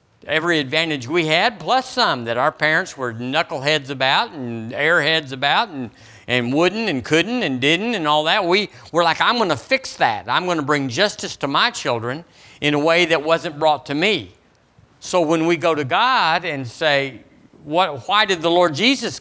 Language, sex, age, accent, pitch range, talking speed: English, male, 50-69, American, 125-185 Hz, 195 wpm